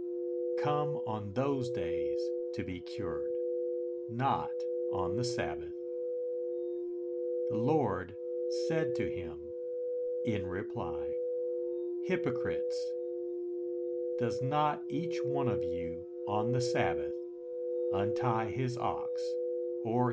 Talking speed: 95 wpm